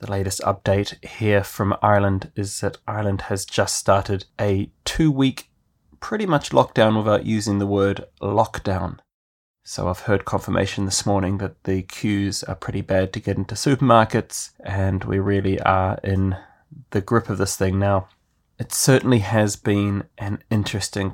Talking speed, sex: 155 wpm, male